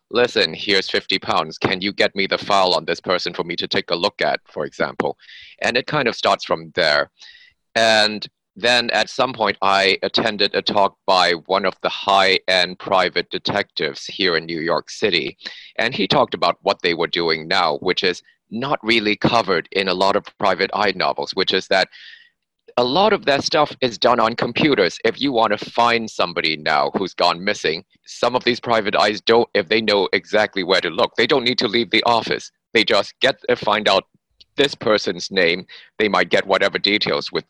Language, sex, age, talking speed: English, male, 30-49, 205 wpm